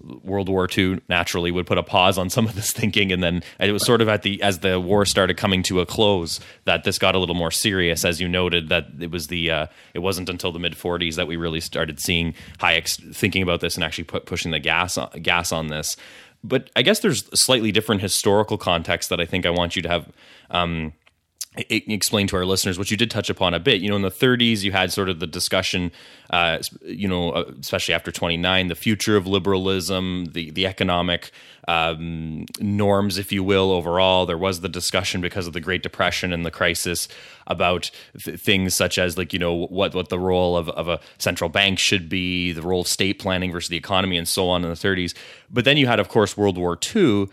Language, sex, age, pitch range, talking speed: English, male, 20-39, 85-100 Hz, 230 wpm